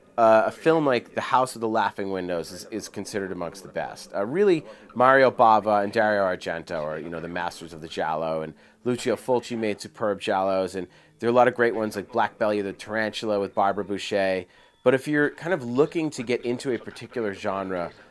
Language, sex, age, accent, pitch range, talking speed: English, male, 30-49, American, 95-120 Hz, 220 wpm